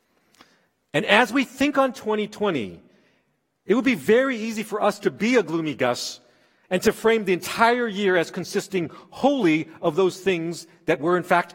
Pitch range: 125-180 Hz